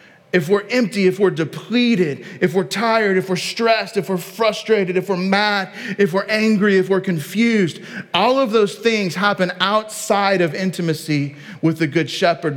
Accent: American